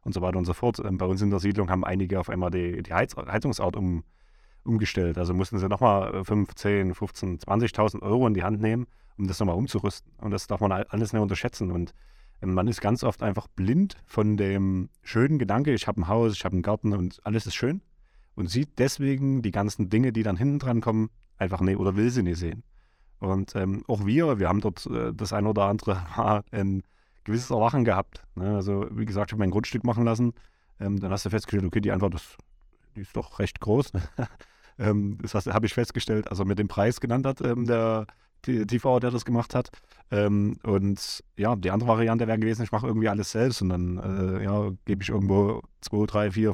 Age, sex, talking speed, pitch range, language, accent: 30-49, male, 200 wpm, 95-115 Hz, German, German